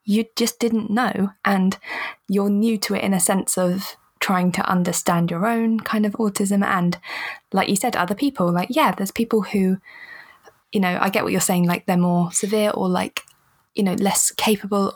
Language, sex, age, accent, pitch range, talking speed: English, female, 20-39, British, 180-210 Hz, 195 wpm